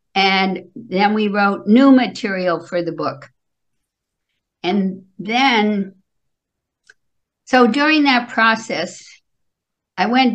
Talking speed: 100 wpm